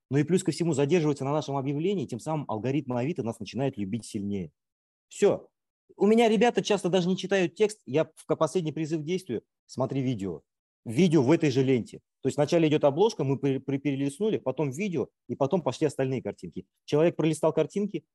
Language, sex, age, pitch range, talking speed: Russian, male, 30-49, 125-165 Hz, 195 wpm